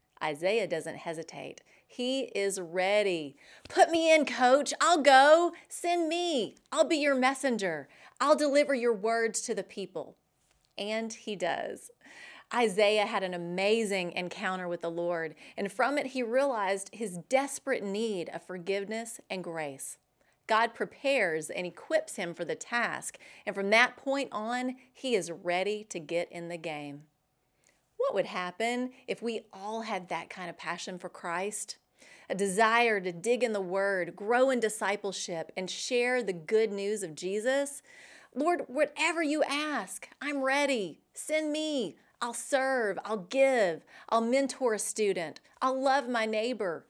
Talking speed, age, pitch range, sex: 150 wpm, 30-49, 185-265 Hz, female